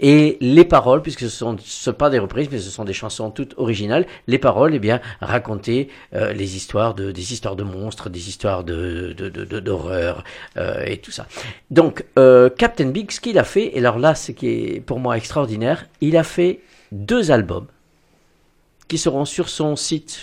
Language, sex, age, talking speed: French, male, 50-69, 210 wpm